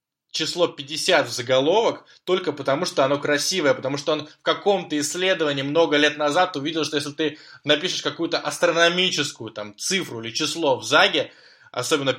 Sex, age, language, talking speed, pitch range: male, 20-39, Russian, 160 wpm, 140-170 Hz